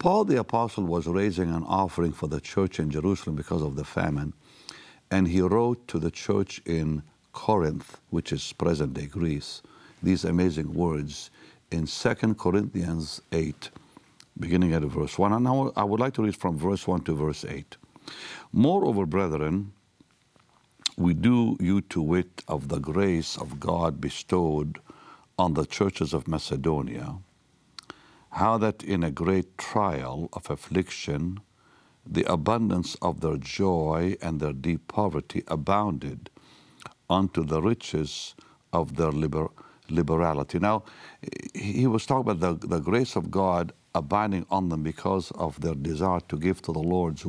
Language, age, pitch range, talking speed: English, 60-79, 80-100 Hz, 145 wpm